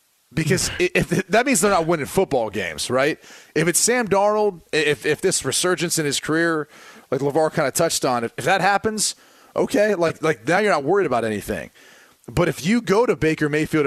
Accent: American